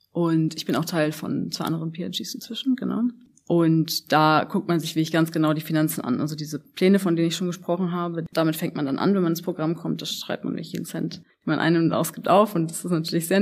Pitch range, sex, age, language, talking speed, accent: 160-185 Hz, female, 20-39, German, 255 wpm, German